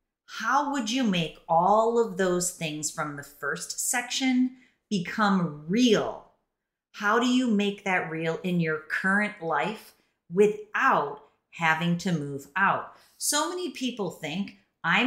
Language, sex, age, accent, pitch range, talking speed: English, female, 30-49, American, 160-235 Hz, 135 wpm